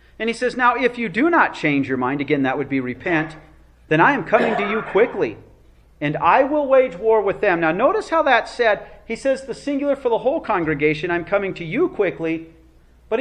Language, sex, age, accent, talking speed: English, male, 40-59, American, 225 wpm